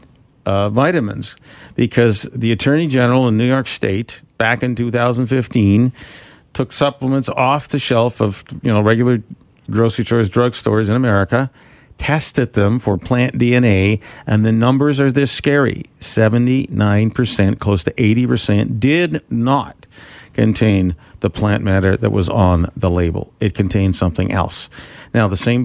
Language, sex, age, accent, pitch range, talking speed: English, male, 50-69, American, 105-130 Hz, 145 wpm